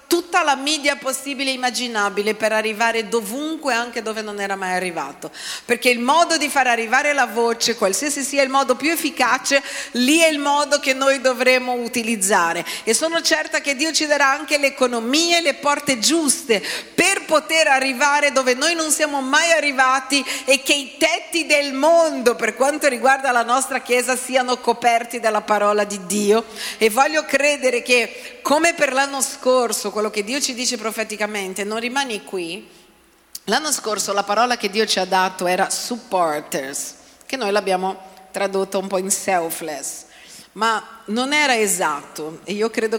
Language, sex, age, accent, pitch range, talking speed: Italian, female, 50-69, native, 205-280 Hz, 170 wpm